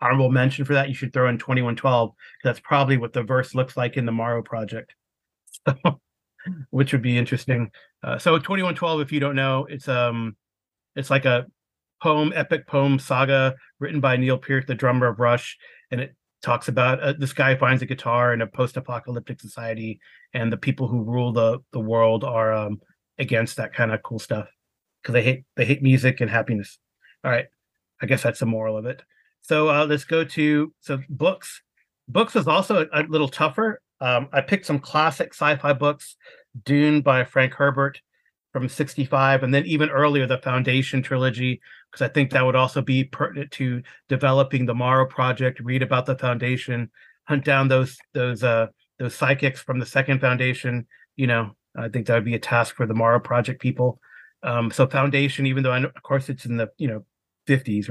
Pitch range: 120-140 Hz